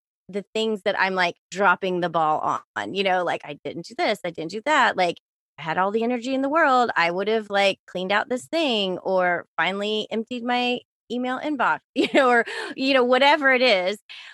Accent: American